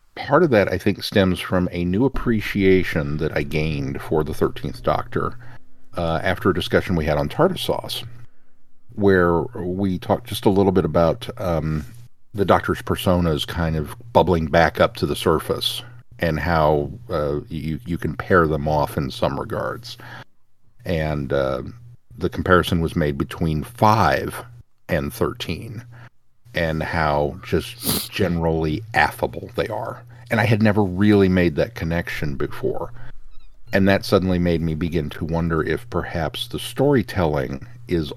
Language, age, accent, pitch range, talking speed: English, 50-69, American, 80-115 Hz, 150 wpm